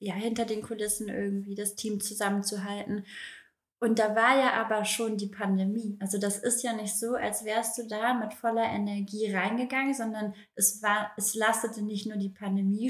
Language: German